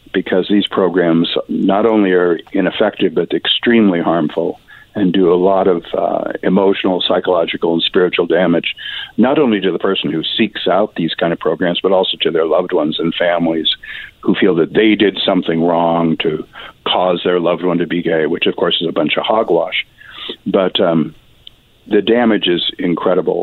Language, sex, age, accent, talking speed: English, male, 60-79, American, 180 wpm